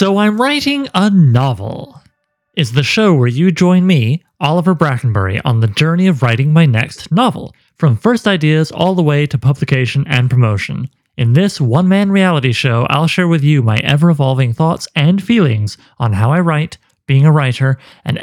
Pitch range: 130-175 Hz